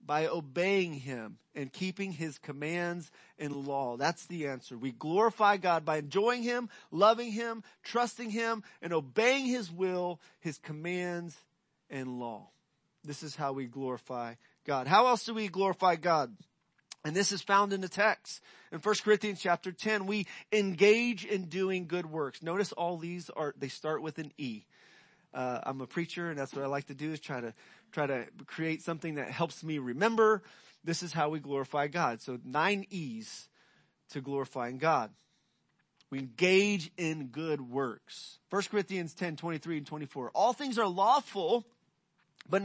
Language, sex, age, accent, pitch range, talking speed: English, male, 30-49, American, 150-205 Hz, 175 wpm